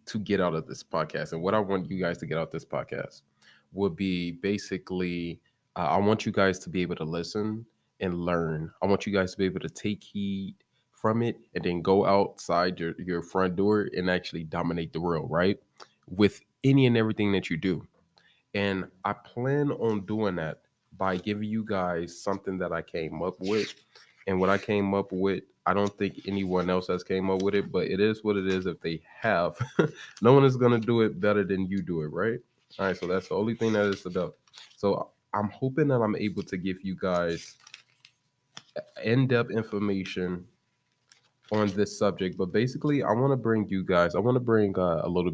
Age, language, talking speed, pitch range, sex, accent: 20-39, English, 210 wpm, 90-105 Hz, male, American